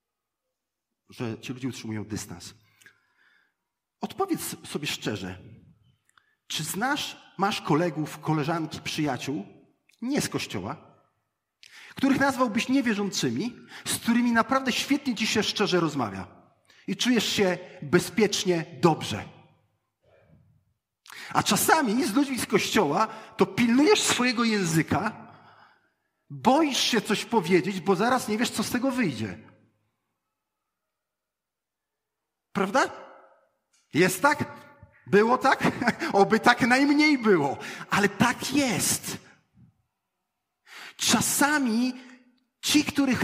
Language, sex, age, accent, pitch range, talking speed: Polish, male, 40-59, native, 170-245 Hz, 95 wpm